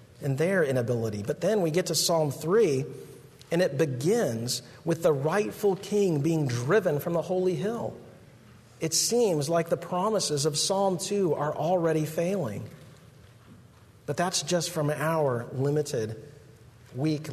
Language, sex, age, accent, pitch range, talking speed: English, male, 40-59, American, 125-160 Hz, 140 wpm